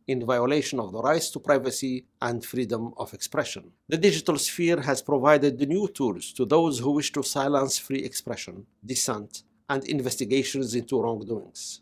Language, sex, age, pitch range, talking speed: English, male, 60-79, 125-150 Hz, 155 wpm